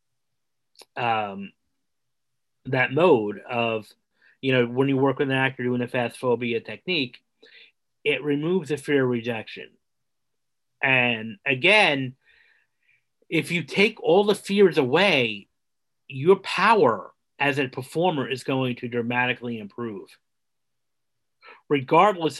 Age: 40-59